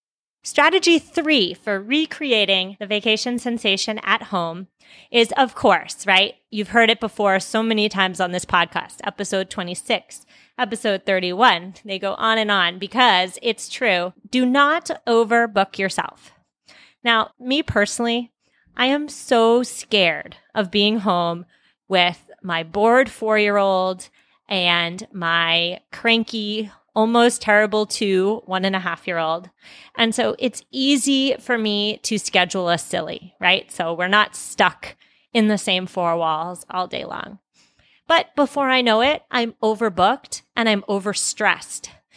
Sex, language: female, English